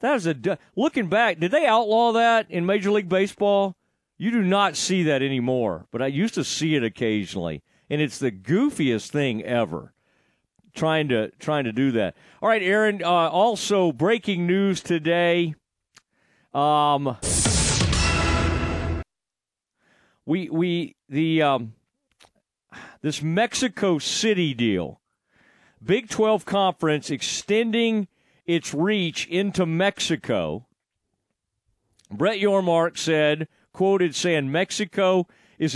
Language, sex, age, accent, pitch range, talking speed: English, male, 40-59, American, 145-195 Hz, 115 wpm